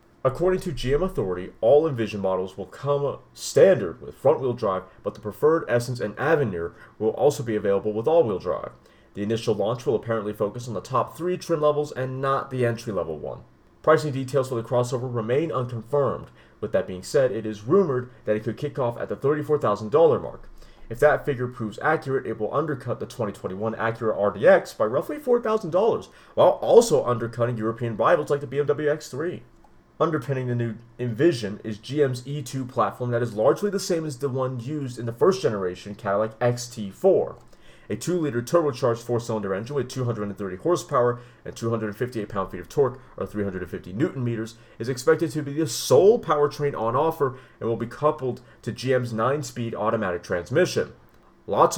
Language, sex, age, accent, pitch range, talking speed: English, male, 30-49, American, 110-145 Hz, 170 wpm